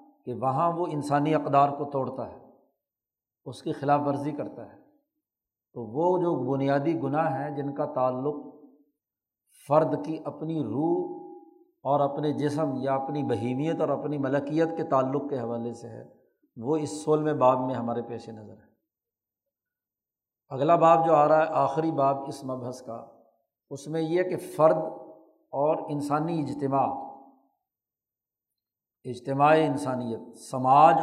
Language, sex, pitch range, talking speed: Urdu, male, 135-160 Hz, 145 wpm